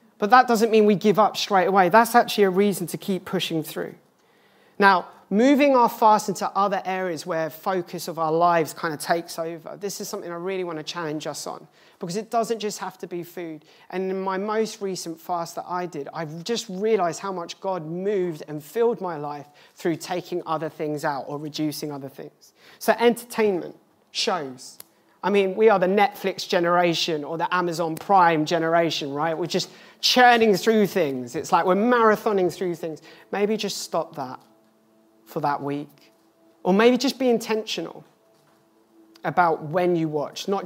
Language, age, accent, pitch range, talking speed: English, 30-49, British, 165-205 Hz, 185 wpm